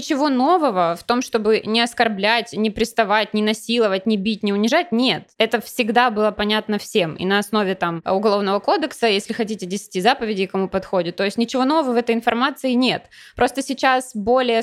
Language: Ukrainian